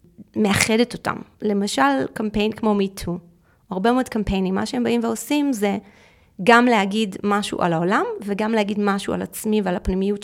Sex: female